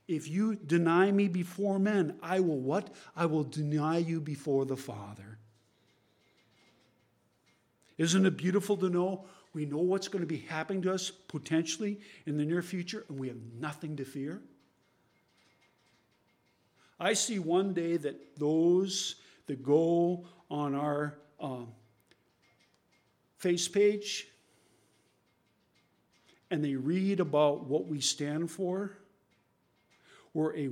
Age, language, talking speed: 50-69, English, 125 wpm